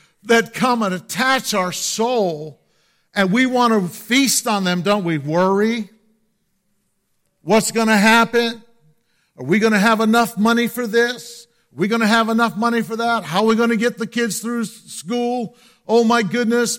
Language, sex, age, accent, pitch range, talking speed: English, male, 50-69, American, 185-230 Hz, 180 wpm